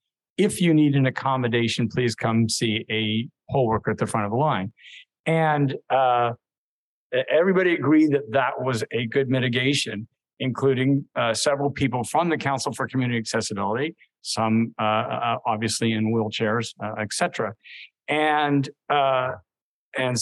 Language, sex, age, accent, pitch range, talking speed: English, male, 50-69, American, 120-145 Hz, 135 wpm